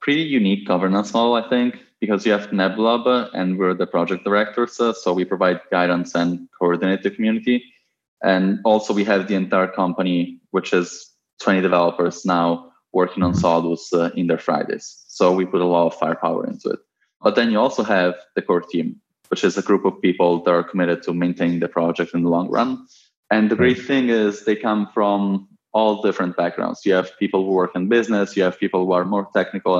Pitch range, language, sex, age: 90-110 Hz, English, male, 20-39